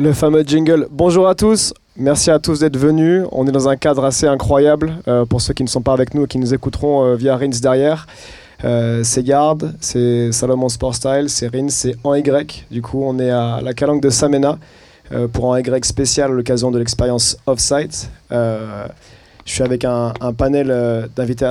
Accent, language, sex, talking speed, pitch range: French, French, male, 210 wpm, 125-145 Hz